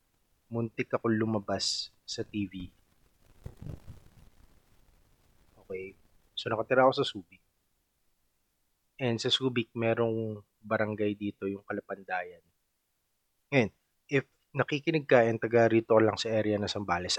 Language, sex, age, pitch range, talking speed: Filipino, male, 20-39, 100-125 Hz, 105 wpm